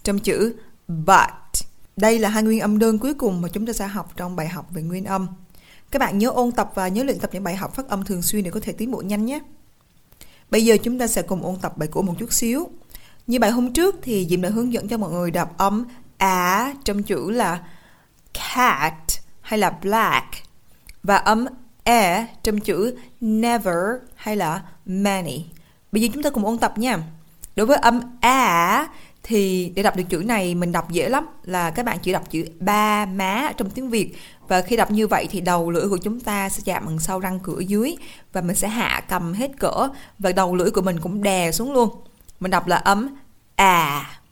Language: Vietnamese